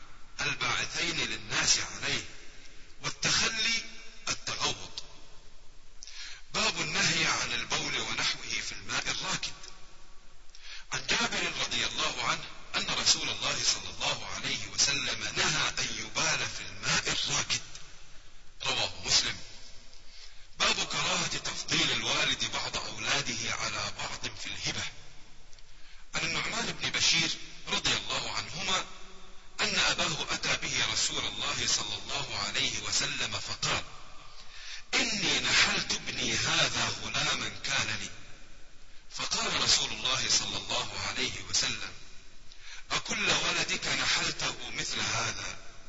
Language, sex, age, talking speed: Arabic, male, 40-59, 105 wpm